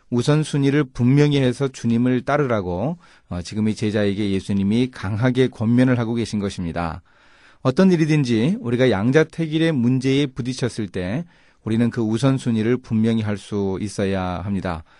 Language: Korean